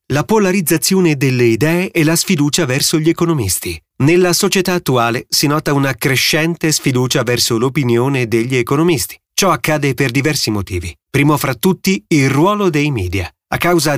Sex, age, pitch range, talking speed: male, 30-49, 115-160 Hz, 155 wpm